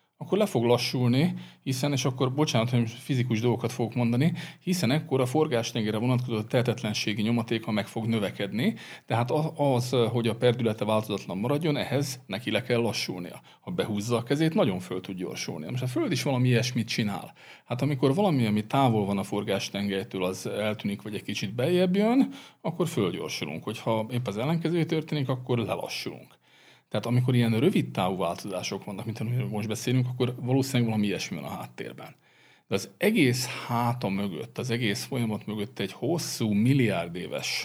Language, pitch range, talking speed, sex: Hungarian, 105-140 Hz, 170 wpm, male